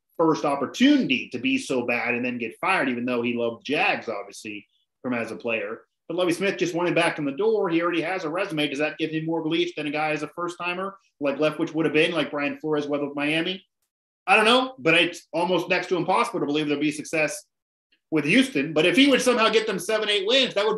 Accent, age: American, 30-49